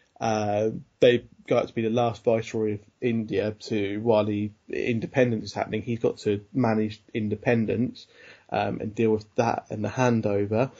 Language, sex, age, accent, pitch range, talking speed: English, male, 20-39, British, 105-120 Hz, 160 wpm